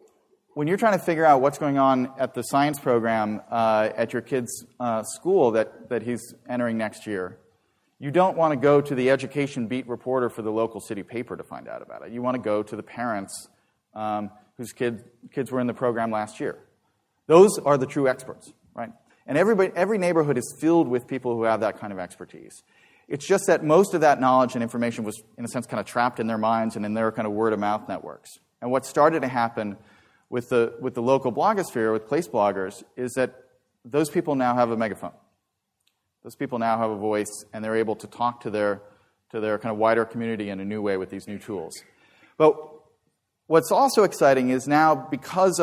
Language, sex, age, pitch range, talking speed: English, male, 30-49, 110-135 Hz, 220 wpm